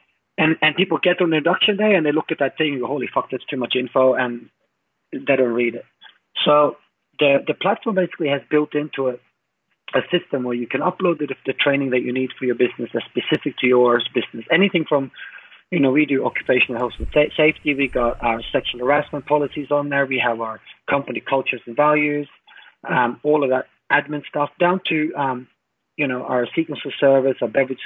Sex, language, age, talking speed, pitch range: male, English, 30-49, 210 wpm, 125-150 Hz